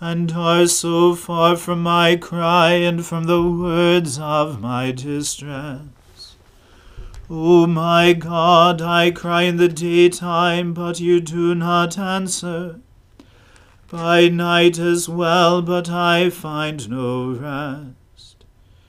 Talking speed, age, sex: 115 wpm, 40-59, male